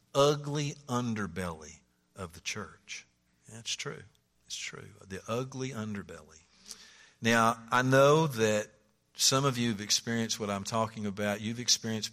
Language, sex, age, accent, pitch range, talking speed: English, male, 50-69, American, 115-185 Hz, 135 wpm